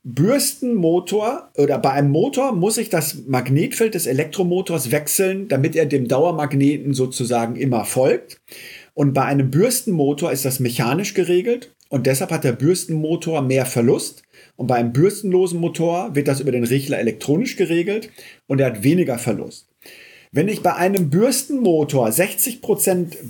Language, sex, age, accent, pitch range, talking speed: German, male, 50-69, German, 140-190 Hz, 145 wpm